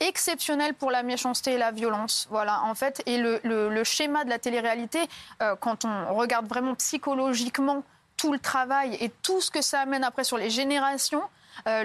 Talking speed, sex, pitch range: 190 wpm, female, 235-275 Hz